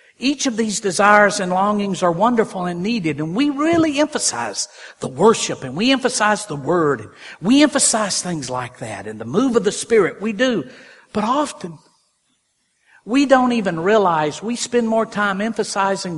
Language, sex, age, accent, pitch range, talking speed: English, male, 50-69, American, 180-265 Hz, 170 wpm